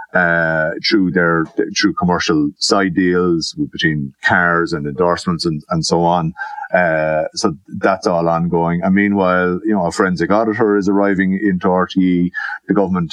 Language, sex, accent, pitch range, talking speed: English, male, Irish, 85-100 Hz, 155 wpm